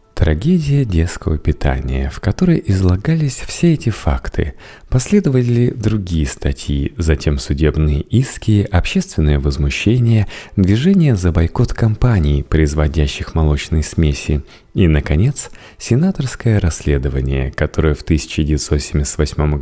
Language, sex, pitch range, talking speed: Russian, male, 75-115 Hz, 95 wpm